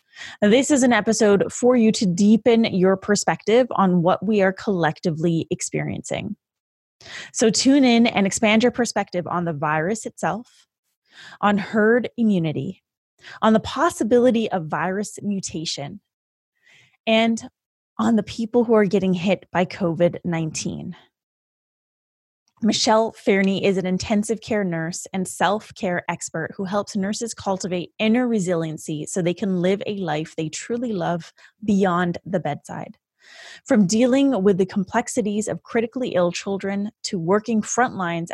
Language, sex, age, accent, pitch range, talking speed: English, female, 20-39, American, 175-225 Hz, 135 wpm